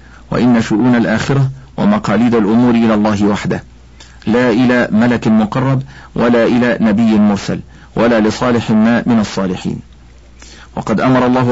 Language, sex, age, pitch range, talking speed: Arabic, male, 50-69, 105-125 Hz, 125 wpm